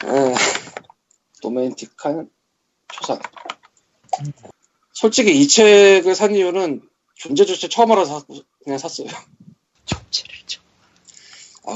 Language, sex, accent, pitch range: Korean, male, native, 135-205 Hz